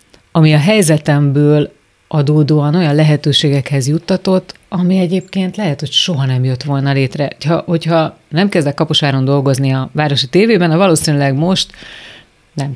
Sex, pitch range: female, 140-165 Hz